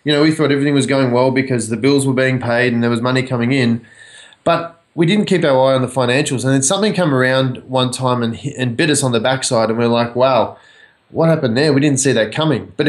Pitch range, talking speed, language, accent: 120-150 Hz, 265 wpm, English, Australian